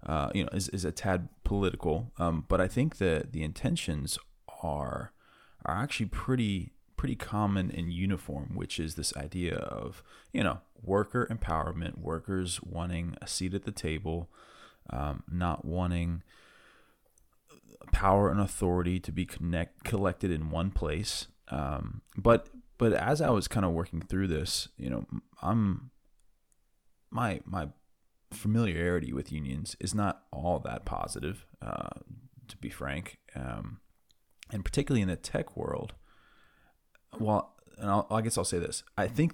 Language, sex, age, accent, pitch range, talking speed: English, male, 20-39, American, 85-105 Hz, 150 wpm